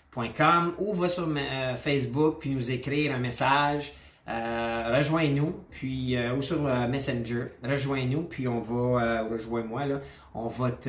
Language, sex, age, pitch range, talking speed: French, male, 30-49, 120-150 Hz, 165 wpm